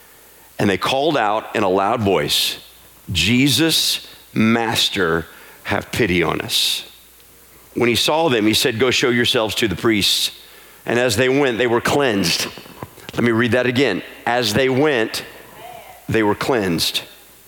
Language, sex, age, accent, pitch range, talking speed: English, male, 50-69, American, 100-130 Hz, 150 wpm